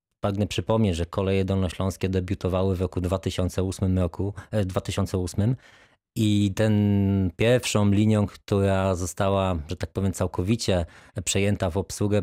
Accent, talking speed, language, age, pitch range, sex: native, 115 wpm, Polish, 20-39, 95-105 Hz, male